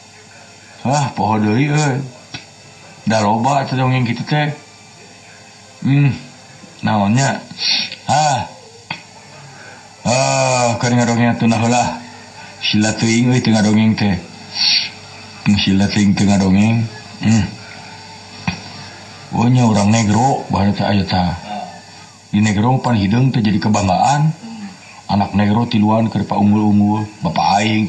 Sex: male